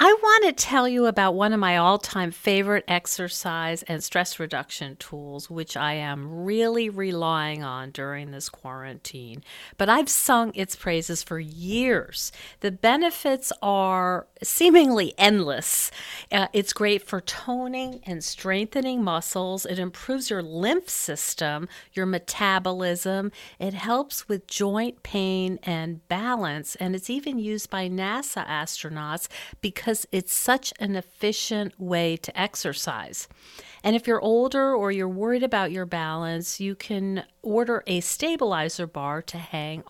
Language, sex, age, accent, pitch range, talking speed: English, female, 50-69, American, 170-225 Hz, 140 wpm